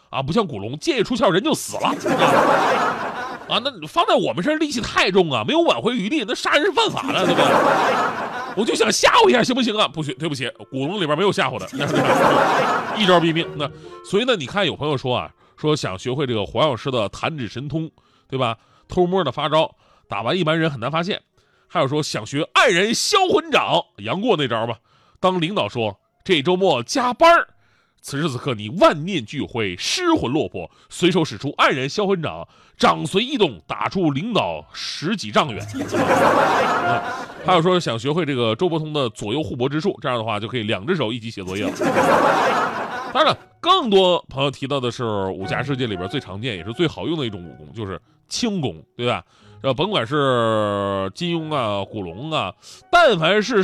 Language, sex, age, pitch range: Chinese, male, 30-49, 120-195 Hz